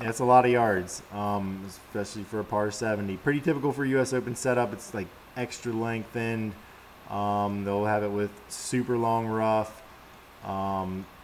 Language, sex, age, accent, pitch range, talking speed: English, male, 20-39, American, 100-125 Hz, 165 wpm